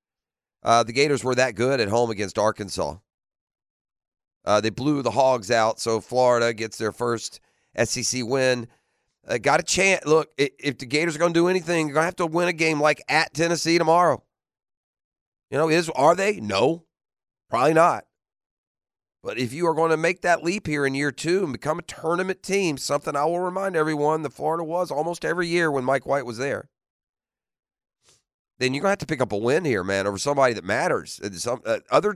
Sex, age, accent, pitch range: male, 40-59, American, 110-170 Hz